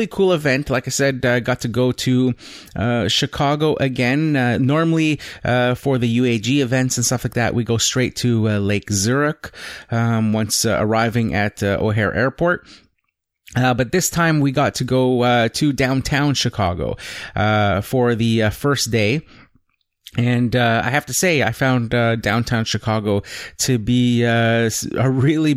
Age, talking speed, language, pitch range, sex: 30-49, 170 wpm, English, 110-130 Hz, male